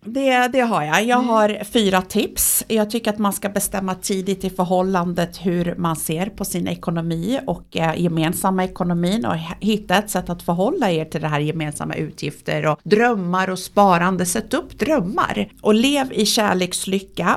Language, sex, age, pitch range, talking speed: Swedish, female, 50-69, 165-205 Hz, 170 wpm